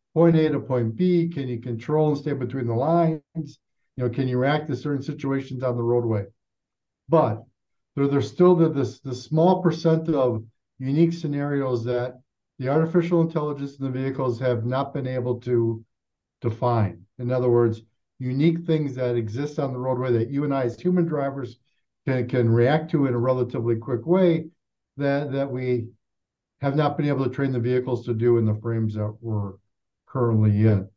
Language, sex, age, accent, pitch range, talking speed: English, male, 50-69, American, 115-140 Hz, 180 wpm